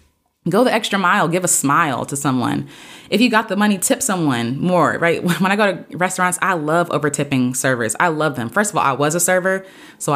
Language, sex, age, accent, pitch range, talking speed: English, female, 20-39, American, 145-195 Hz, 225 wpm